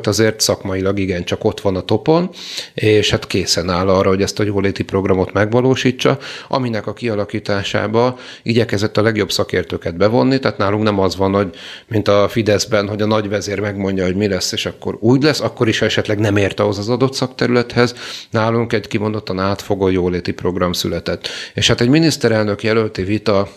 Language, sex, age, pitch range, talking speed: Hungarian, male, 40-59, 95-120 Hz, 180 wpm